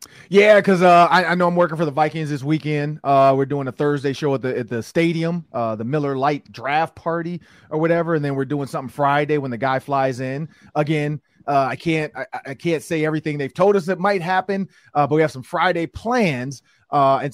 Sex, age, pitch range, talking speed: male, 30-49, 135-170 Hz, 230 wpm